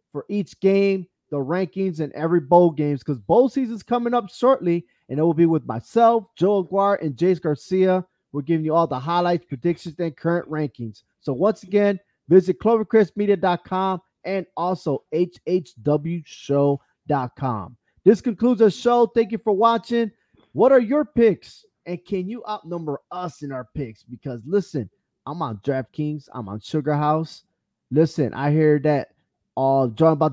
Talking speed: 160 wpm